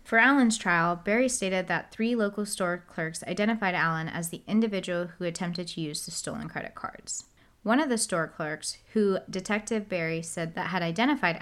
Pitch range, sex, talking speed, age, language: 165-210 Hz, female, 185 wpm, 20-39, English